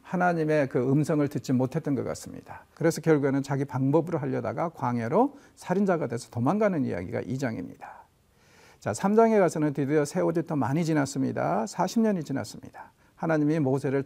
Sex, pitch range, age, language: male, 135-190 Hz, 50-69, Korean